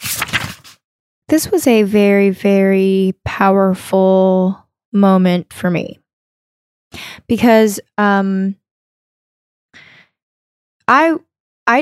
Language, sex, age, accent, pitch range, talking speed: English, female, 20-39, American, 180-210 Hz, 65 wpm